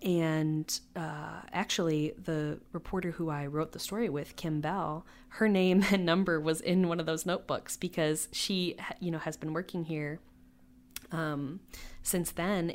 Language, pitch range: English, 145-165 Hz